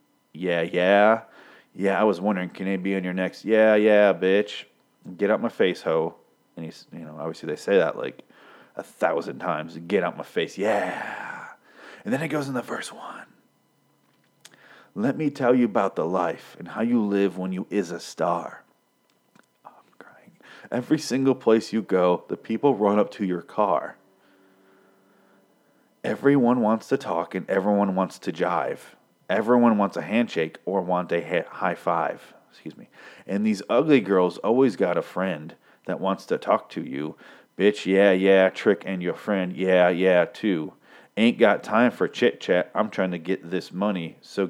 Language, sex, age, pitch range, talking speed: English, male, 30-49, 95-120 Hz, 180 wpm